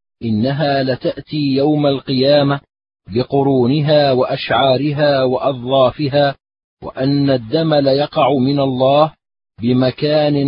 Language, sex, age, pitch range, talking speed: Arabic, male, 40-59, 125-145 Hz, 75 wpm